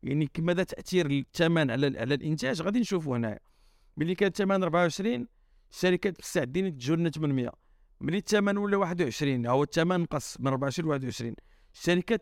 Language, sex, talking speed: Arabic, male, 150 wpm